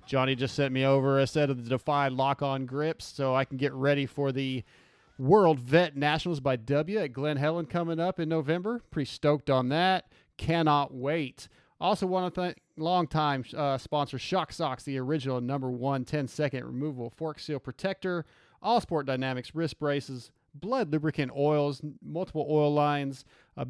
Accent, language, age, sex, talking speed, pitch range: American, English, 30-49, male, 165 wpm, 130-160 Hz